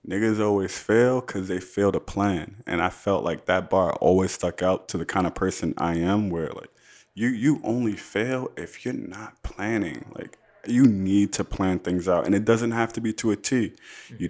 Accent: American